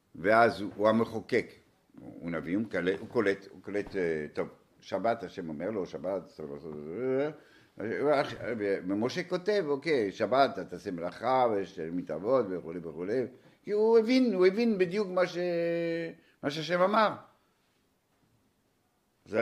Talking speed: 125 wpm